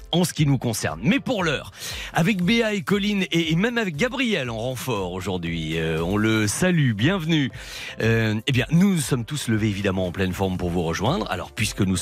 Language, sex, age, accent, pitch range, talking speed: French, male, 40-59, French, 105-155 Hz, 205 wpm